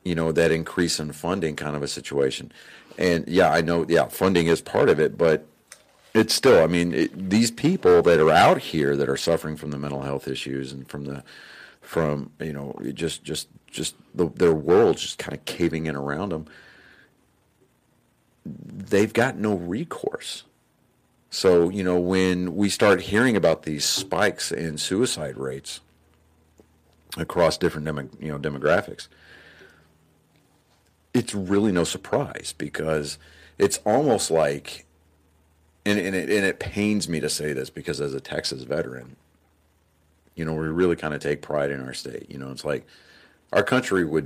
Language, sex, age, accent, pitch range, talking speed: English, male, 40-59, American, 75-85 Hz, 165 wpm